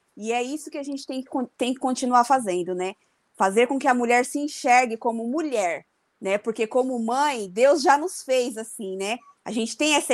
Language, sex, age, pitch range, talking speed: Portuguese, female, 20-39, 205-250 Hz, 205 wpm